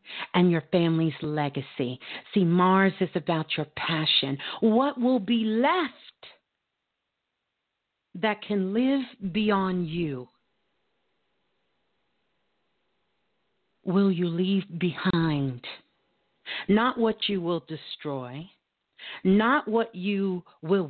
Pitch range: 160-210 Hz